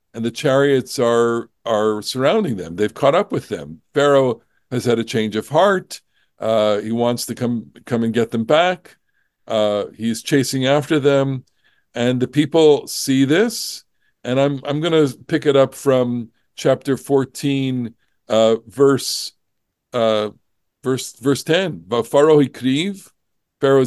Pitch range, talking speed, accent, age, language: 120-170 Hz, 145 wpm, American, 50-69, English